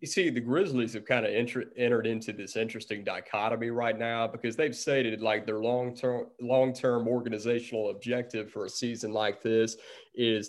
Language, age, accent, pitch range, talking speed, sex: English, 30-49, American, 115-130 Hz, 175 wpm, male